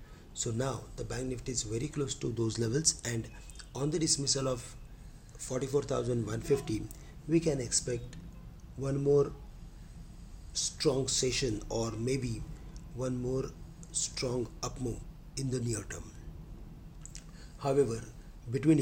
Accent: Indian